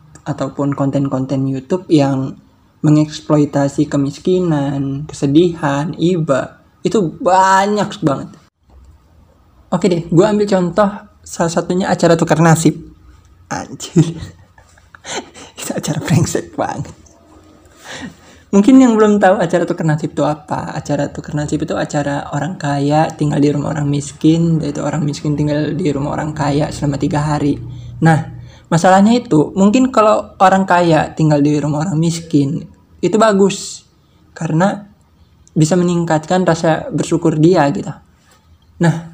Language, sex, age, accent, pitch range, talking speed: Indonesian, male, 20-39, native, 145-210 Hz, 125 wpm